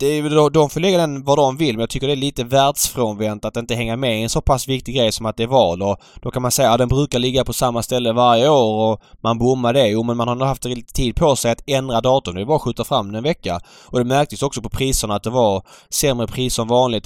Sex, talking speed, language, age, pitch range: male, 275 wpm, Swedish, 20-39, 110-135 Hz